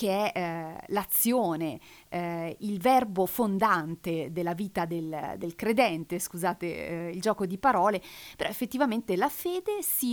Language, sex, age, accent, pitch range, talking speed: Italian, female, 40-59, native, 170-220 Hz, 140 wpm